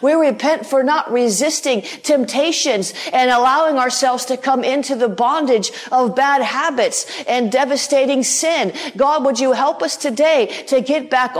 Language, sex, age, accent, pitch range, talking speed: English, female, 50-69, American, 255-300 Hz, 155 wpm